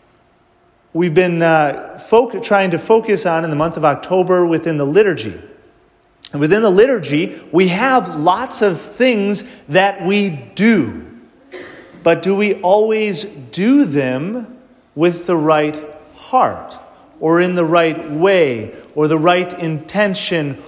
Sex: male